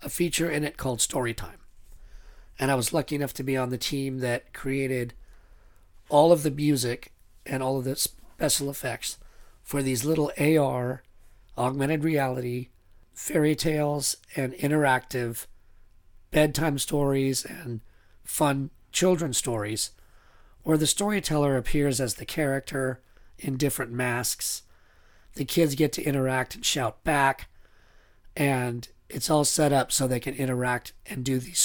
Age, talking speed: 40-59, 140 wpm